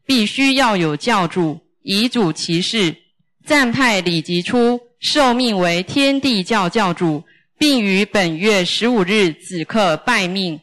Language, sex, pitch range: Chinese, female, 175-235 Hz